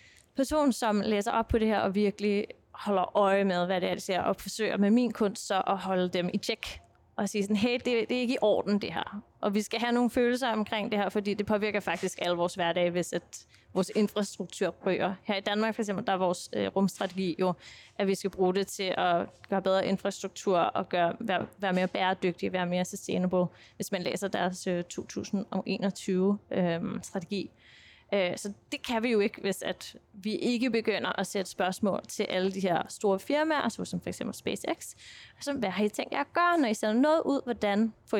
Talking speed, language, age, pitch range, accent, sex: 210 wpm, Danish, 20-39, 185-215 Hz, native, female